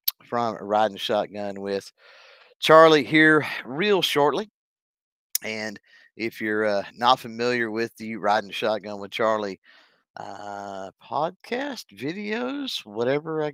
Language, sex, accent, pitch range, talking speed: English, male, American, 105-145 Hz, 115 wpm